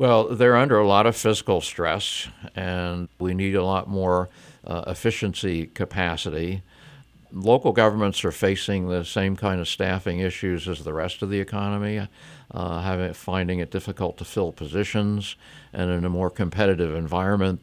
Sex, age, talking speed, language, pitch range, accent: male, 60-79, 155 wpm, English, 90-105 Hz, American